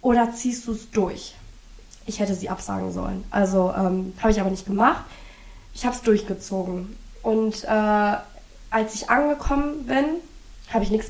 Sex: female